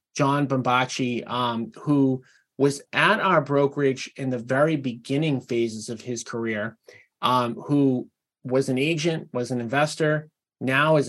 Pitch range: 125-155 Hz